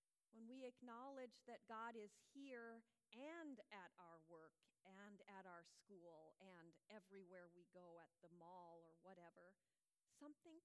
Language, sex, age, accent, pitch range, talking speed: English, female, 40-59, American, 180-245 Hz, 140 wpm